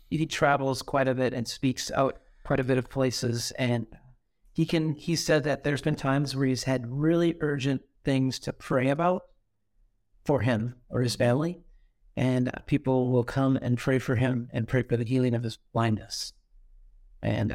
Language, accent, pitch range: English, American, 120-155 Hz